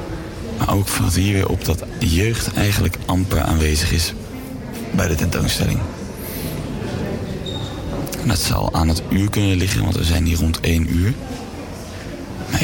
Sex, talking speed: male, 145 wpm